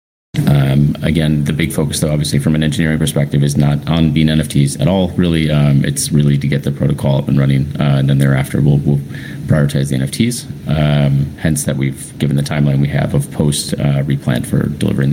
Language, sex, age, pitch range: English, male, 30-49, 75-90 Hz